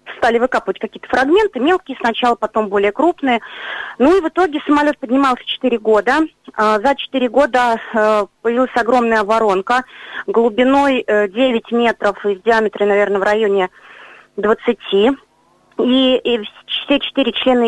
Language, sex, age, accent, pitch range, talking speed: Russian, female, 30-49, native, 215-265 Hz, 125 wpm